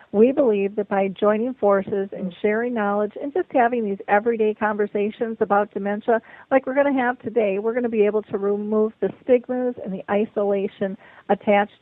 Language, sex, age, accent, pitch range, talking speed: English, female, 50-69, American, 200-225 Hz, 185 wpm